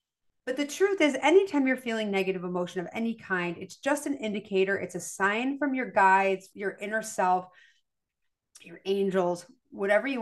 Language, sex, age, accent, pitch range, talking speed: English, female, 30-49, American, 190-245 Hz, 170 wpm